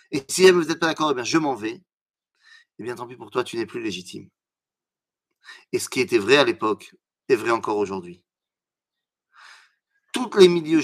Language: French